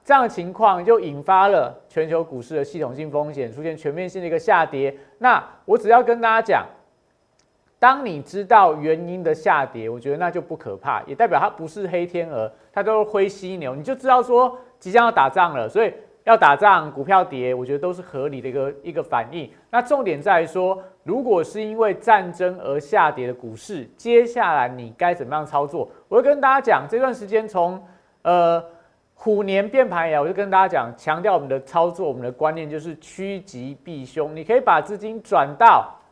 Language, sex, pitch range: Chinese, male, 155-215 Hz